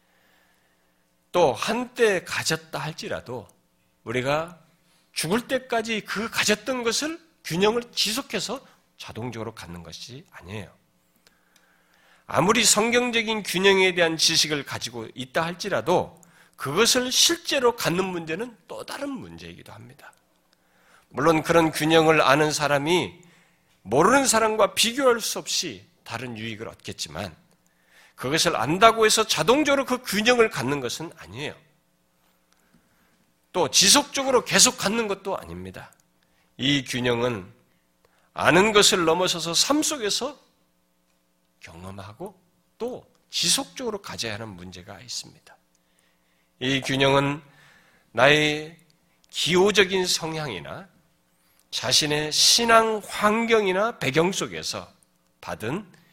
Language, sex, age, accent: Korean, male, 40-59, native